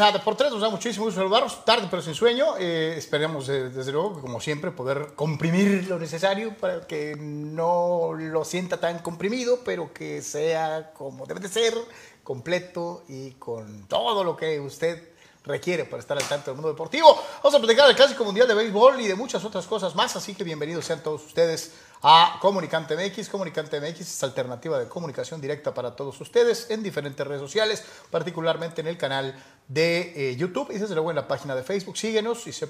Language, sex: Spanish, male